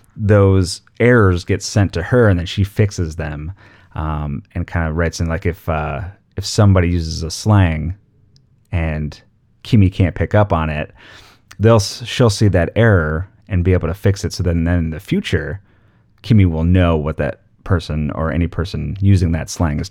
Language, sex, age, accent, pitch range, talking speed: English, male, 30-49, American, 85-105 Hz, 185 wpm